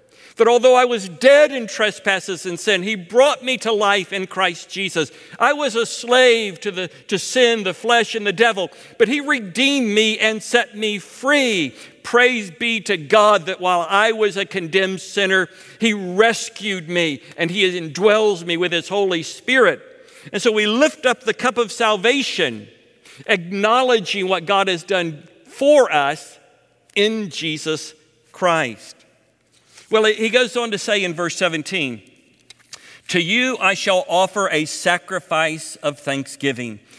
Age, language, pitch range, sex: 60-79, English, 165-220 Hz, male